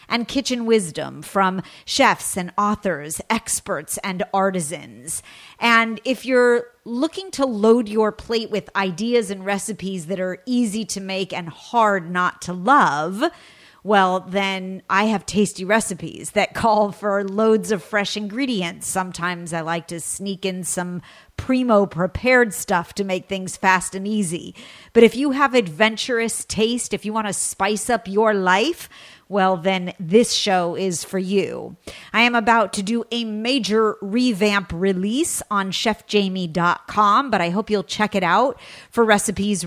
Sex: female